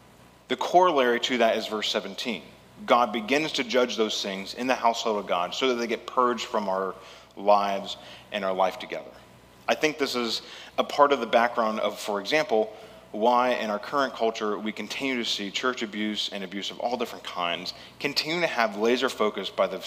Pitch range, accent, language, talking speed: 100-125 Hz, American, English, 200 wpm